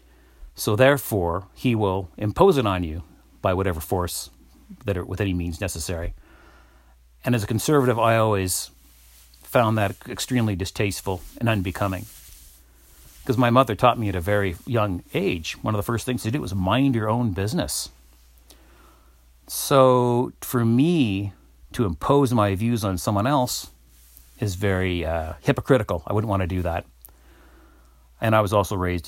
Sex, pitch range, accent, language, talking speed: male, 80-115 Hz, American, English, 155 wpm